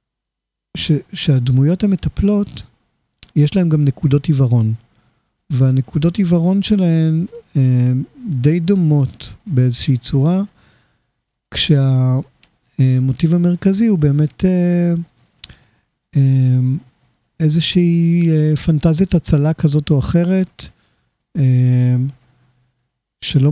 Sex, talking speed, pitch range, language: male, 80 wpm, 130-165 Hz, Hebrew